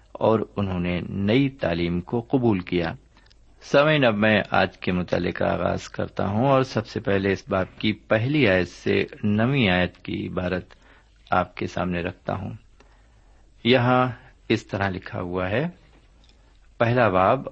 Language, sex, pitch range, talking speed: Urdu, male, 95-125 Hz, 110 wpm